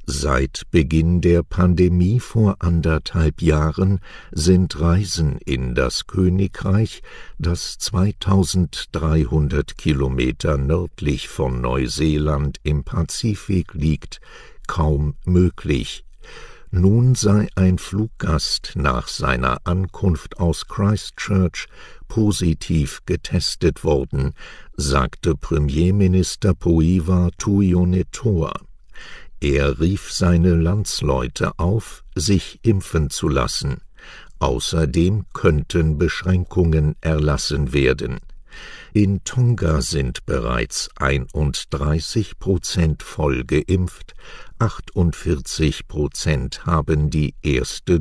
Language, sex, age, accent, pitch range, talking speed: English, male, 60-79, German, 75-95 Hz, 80 wpm